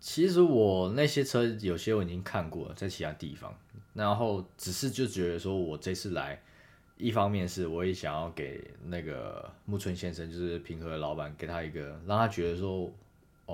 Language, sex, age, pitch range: Chinese, male, 20-39, 85-100 Hz